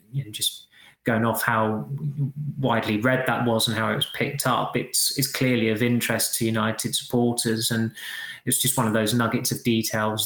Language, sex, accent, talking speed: English, male, British, 195 wpm